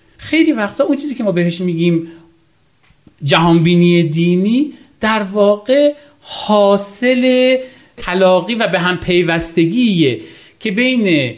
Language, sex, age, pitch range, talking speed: Persian, male, 40-59, 160-245 Hz, 105 wpm